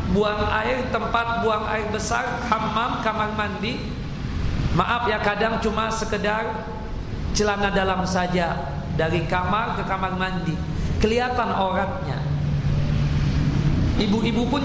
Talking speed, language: 105 wpm, Indonesian